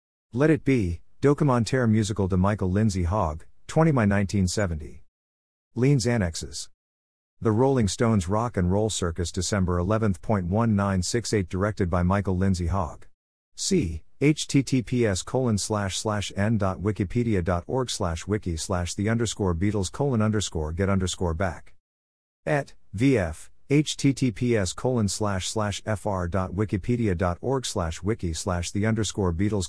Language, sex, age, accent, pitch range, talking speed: English, male, 50-69, American, 90-110 Hz, 125 wpm